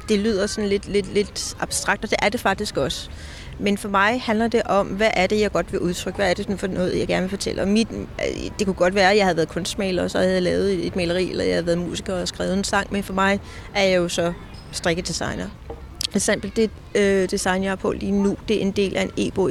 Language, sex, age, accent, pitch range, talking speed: Danish, female, 30-49, native, 185-215 Hz, 270 wpm